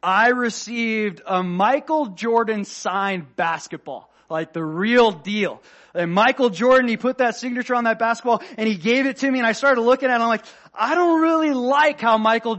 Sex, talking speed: male, 200 wpm